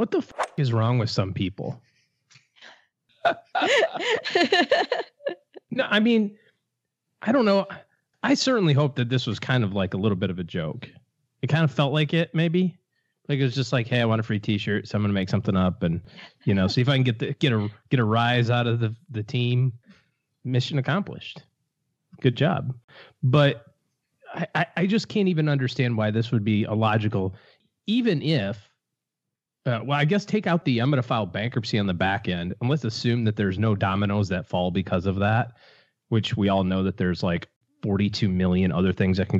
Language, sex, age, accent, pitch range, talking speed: English, male, 30-49, American, 105-150 Hz, 200 wpm